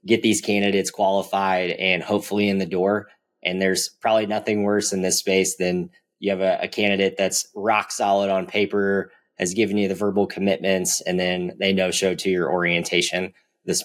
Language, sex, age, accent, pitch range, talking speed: English, male, 20-39, American, 95-105 Hz, 180 wpm